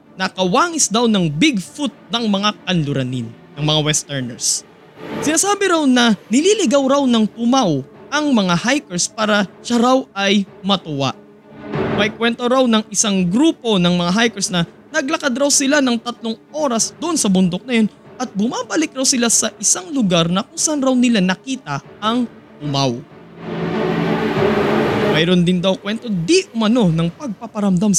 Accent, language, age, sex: native, Filipino, 20-39, male